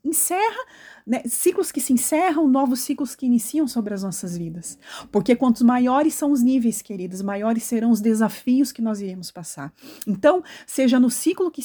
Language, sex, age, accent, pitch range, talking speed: Portuguese, female, 30-49, Brazilian, 200-245 Hz, 175 wpm